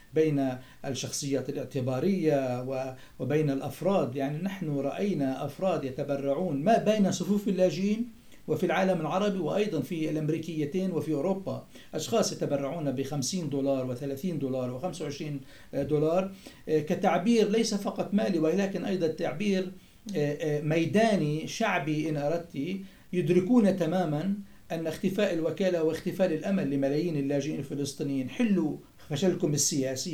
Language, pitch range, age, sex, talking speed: Arabic, 145-185 Hz, 60-79, male, 110 wpm